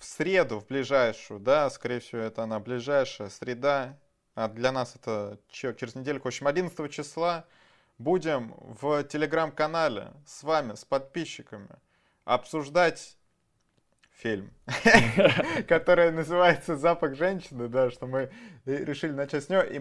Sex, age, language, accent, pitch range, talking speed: male, 20-39, Russian, native, 130-165 Hz, 125 wpm